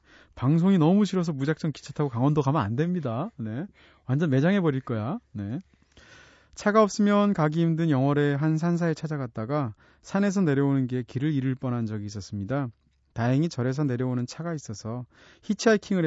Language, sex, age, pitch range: Korean, male, 30-49, 120-160 Hz